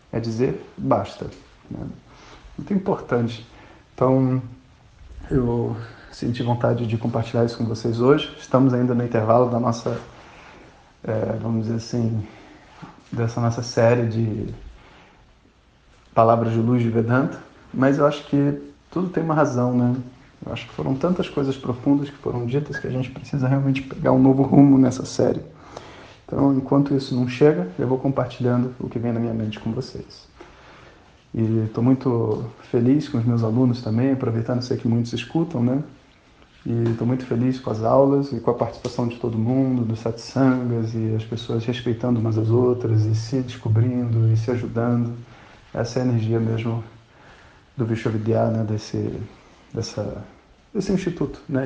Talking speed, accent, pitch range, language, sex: 160 wpm, Brazilian, 115-130 Hz, Portuguese, male